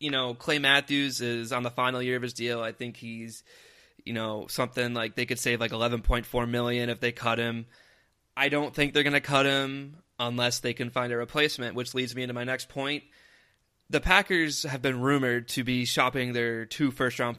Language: English